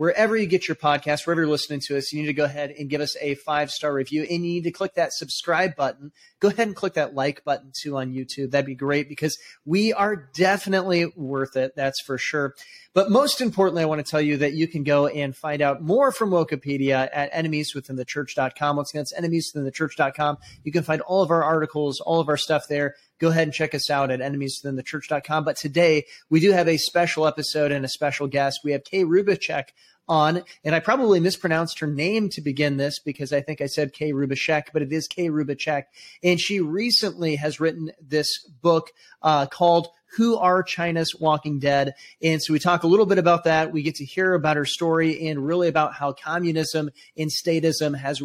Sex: male